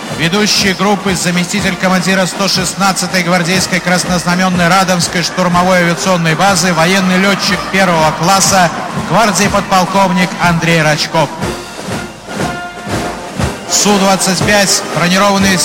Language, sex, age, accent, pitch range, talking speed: Russian, male, 50-69, native, 175-200 Hz, 85 wpm